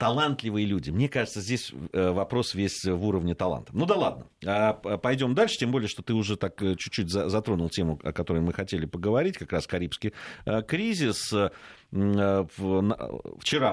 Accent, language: native, Russian